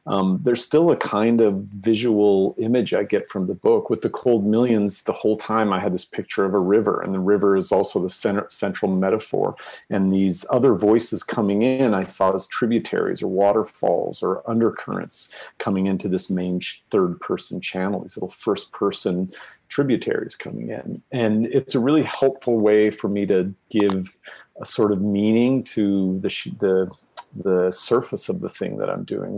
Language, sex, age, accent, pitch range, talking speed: English, male, 40-59, American, 95-115 Hz, 175 wpm